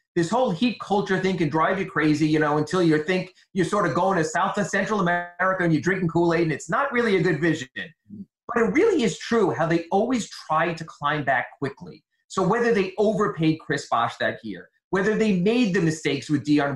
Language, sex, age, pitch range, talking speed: English, male, 30-49, 155-200 Hz, 220 wpm